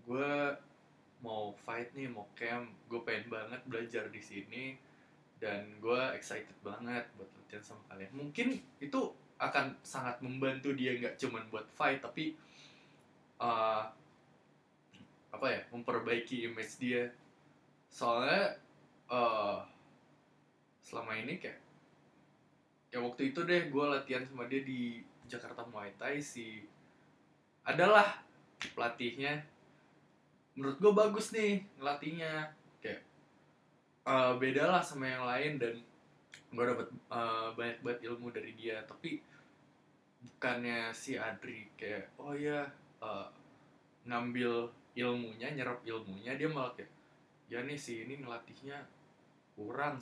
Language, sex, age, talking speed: Indonesian, male, 20-39, 120 wpm